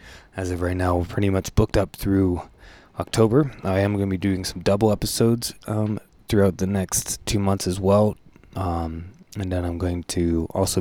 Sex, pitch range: male, 85-100 Hz